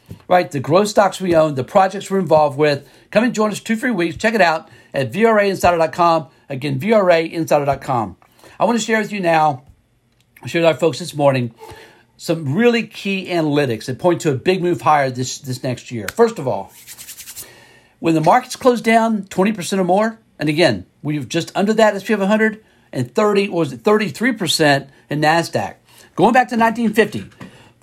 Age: 50-69